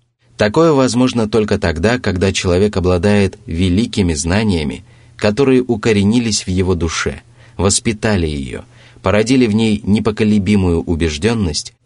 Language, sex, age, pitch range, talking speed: Russian, male, 30-49, 90-120 Hz, 105 wpm